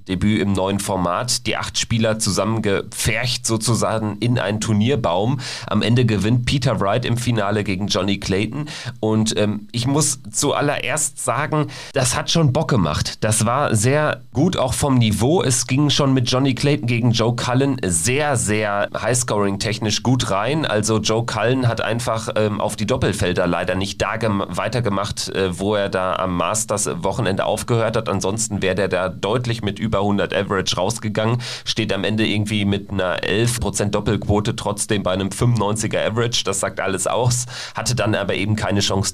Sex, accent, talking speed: male, German, 170 wpm